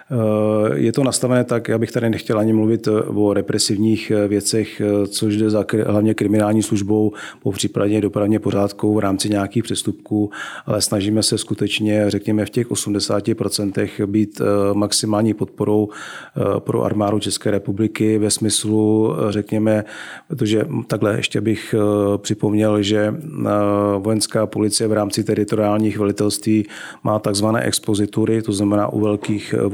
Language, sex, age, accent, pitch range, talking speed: Czech, male, 40-59, native, 100-110 Hz, 130 wpm